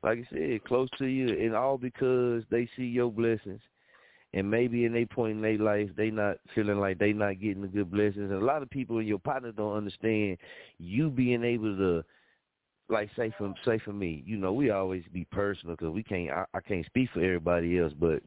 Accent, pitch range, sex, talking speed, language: American, 100-120 Hz, male, 225 wpm, English